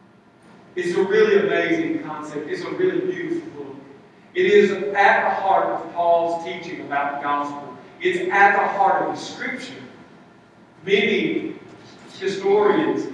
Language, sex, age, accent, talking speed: English, male, 40-59, American, 135 wpm